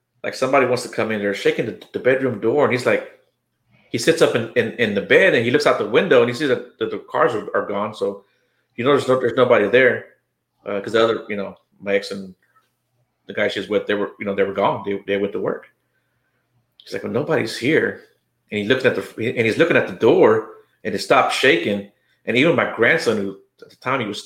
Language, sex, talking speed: English, male, 255 wpm